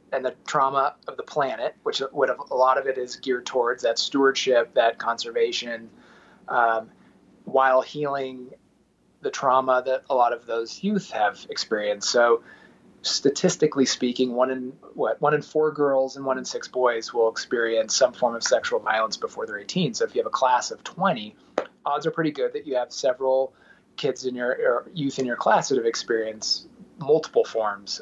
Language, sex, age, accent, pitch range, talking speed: English, male, 30-49, American, 125-175 Hz, 185 wpm